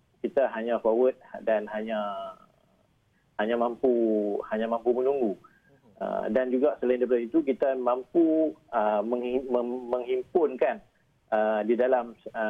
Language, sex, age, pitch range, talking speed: Malay, male, 40-59, 105-125 Hz, 100 wpm